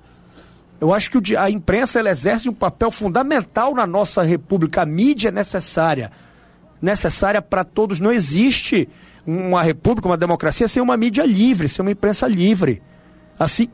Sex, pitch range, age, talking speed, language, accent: male, 160-230 Hz, 50-69, 155 wpm, Portuguese, Brazilian